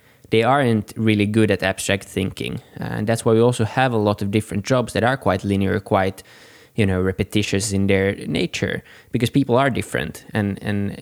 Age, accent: 20-39, native